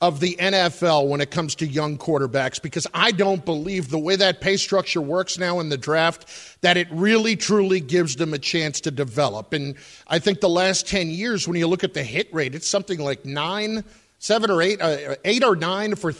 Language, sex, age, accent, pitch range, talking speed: English, male, 50-69, American, 155-200 Hz, 220 wpm